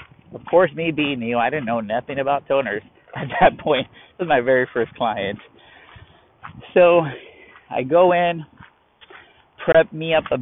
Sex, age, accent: male, 30-49, American